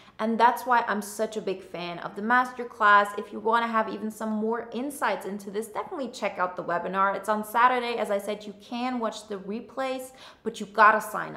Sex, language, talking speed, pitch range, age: female, English, 225 wpm, 205-250 Hz, 20-39